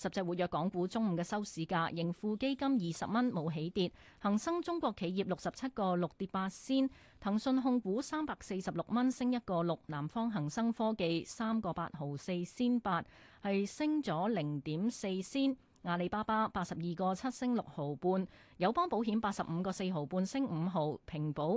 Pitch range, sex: 170-230 Hz, female